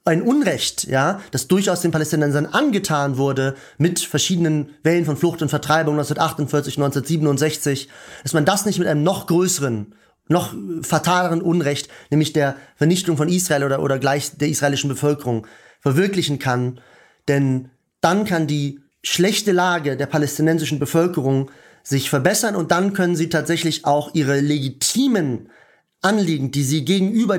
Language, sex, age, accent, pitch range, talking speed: German, male, 30-49, German, 140-175 Hz, 140 wpm